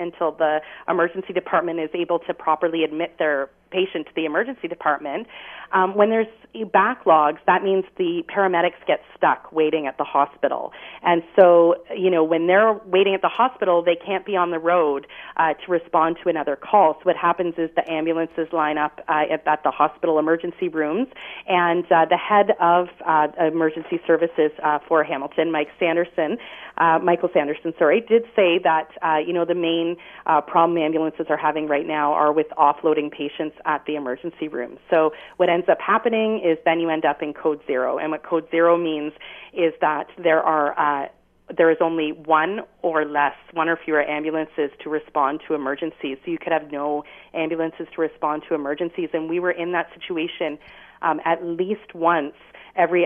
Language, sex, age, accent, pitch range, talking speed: English, female, 30-49, American, 155-175 Hz, 185 wpm